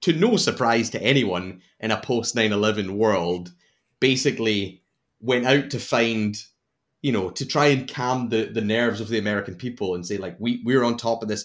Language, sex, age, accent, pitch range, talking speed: English, male, 30-49, British, 110-125 Hz, 195 wpm